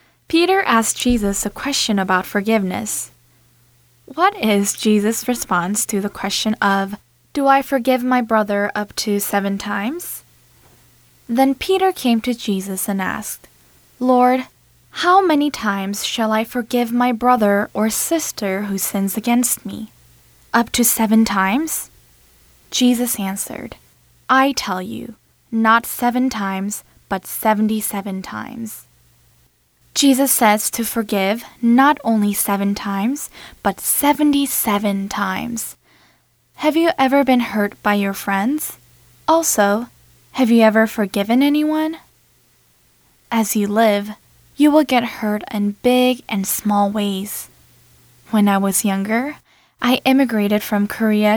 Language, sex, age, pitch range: Korean, female, 10-29, 205-250 Hz